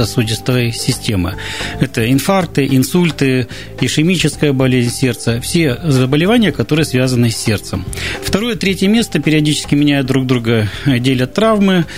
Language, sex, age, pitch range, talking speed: Russian, male, 40-59, 130-165 Hz, 115 wpm